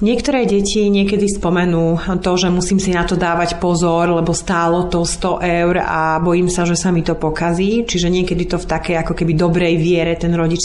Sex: female